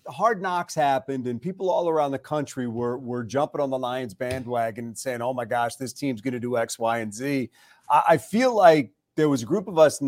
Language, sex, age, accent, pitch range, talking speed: English, male, 40-59, American, 130-175 Hz, 240 wpm